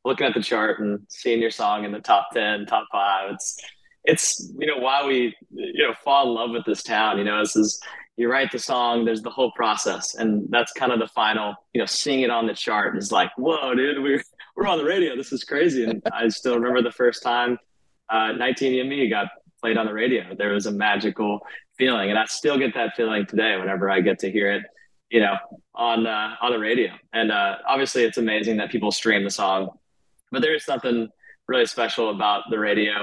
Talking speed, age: 225 wpm, 20-39